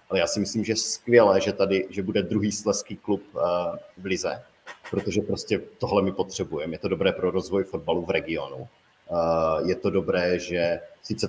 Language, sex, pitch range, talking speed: Czech, male, 95-105 Hz, 185 wpm